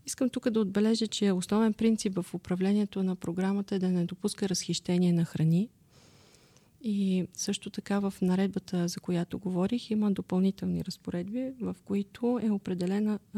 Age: 40-59